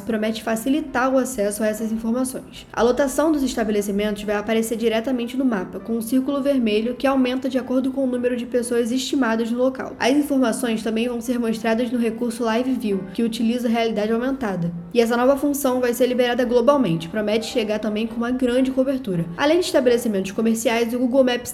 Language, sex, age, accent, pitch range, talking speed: Portuguese, female, 10-29, Brazilian, 225-260 Hz, 190 wpm